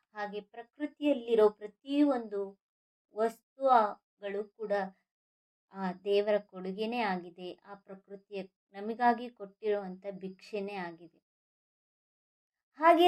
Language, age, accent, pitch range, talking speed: English, 20-39, Indian, 195-260 Hz, 125 wpm